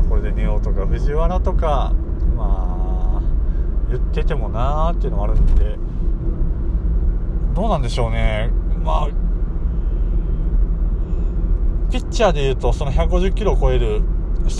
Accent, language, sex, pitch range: native, Japanese, male, 70-105 Hz